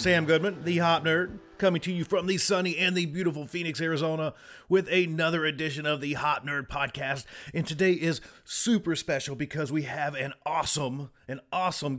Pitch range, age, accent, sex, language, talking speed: 135-175 Hz, 30-49, American, male, English, 180 wpm